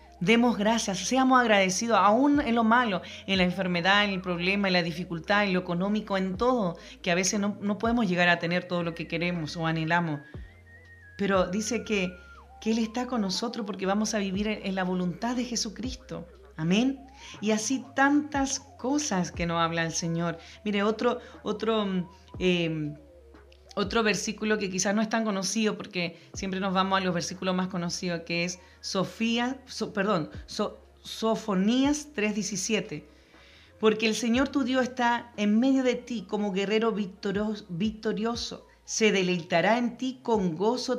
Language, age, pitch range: Spanish, 30-49, 180-230 Hz